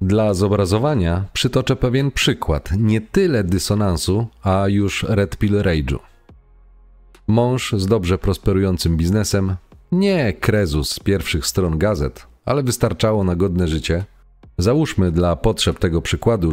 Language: Polish